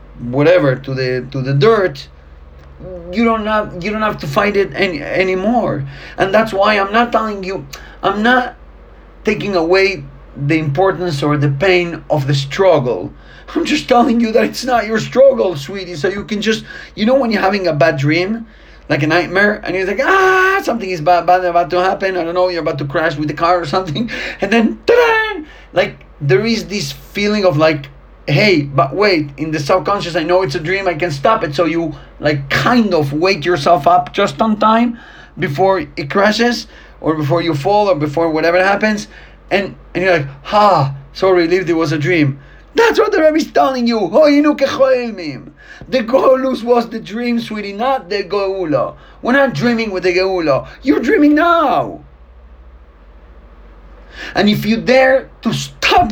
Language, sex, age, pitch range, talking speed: English, male, 40-59, 160-225 Hz, 185 wpm